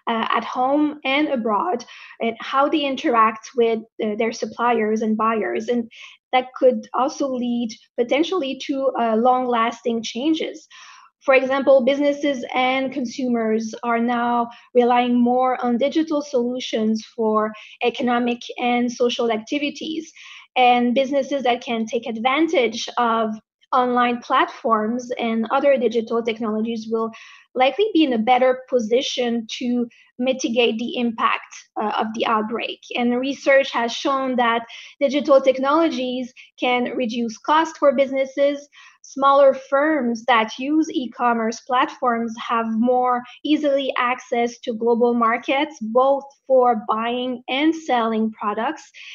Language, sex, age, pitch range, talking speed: English, female, 20-39, 235-275 Hz, 125 wpm